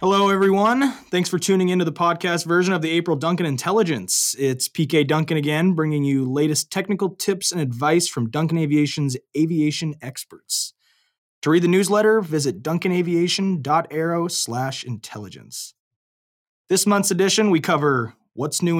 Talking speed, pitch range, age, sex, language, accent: 145 wpm, 145-185 Hz, 20-39, male, English, American